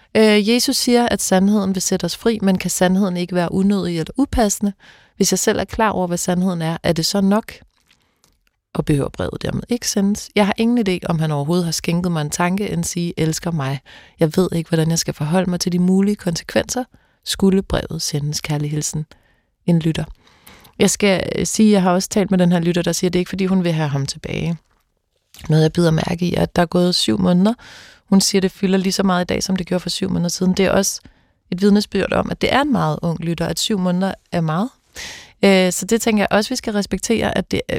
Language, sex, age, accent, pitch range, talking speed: Danish, female, 30-49, native, 170-200 Hz, 240 wpm